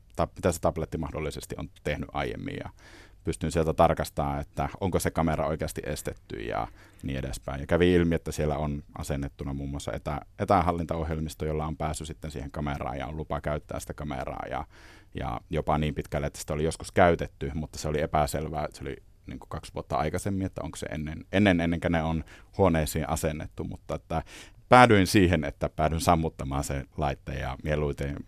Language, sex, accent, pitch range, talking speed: Finnish, male, native, 75-95 Hz, 185 wpm